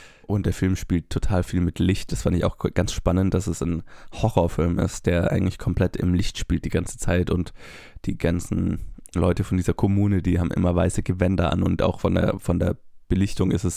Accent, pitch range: German, 90-100 Hz